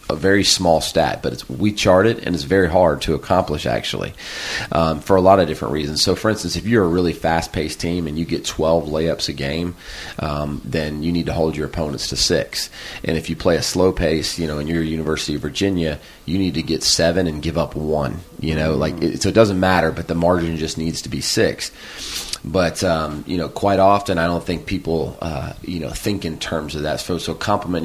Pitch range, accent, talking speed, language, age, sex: 80-95 Hz, American, 235 wpm, English, 30-49, male